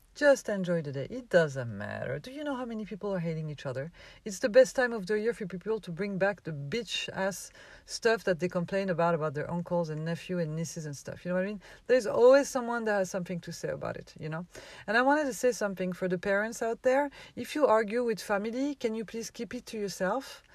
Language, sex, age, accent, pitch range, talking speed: English, female, 40-59, French, 175-230 Hz, 250 wpm